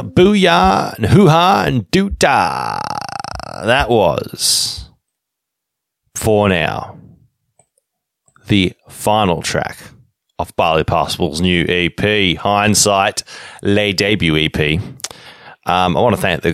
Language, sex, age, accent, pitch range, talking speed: English, male, 30-49, Australian, 90-125 Hz, 100 wpm